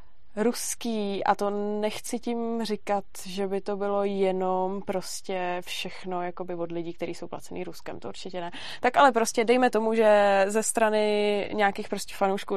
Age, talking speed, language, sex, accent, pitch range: 20-39, 165 wpm, Czech, female, native, 195-215 Hz